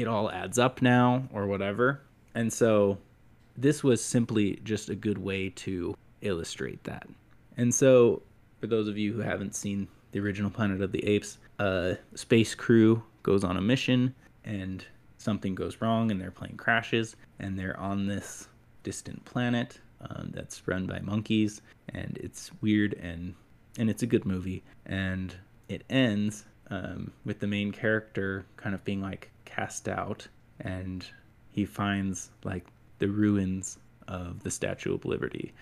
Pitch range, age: 95-115 Hz, 20-39